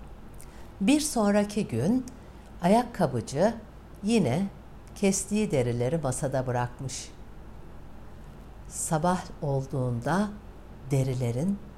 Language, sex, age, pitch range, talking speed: Turkish, female, 60-79, 130-200 Hz, 60 wpm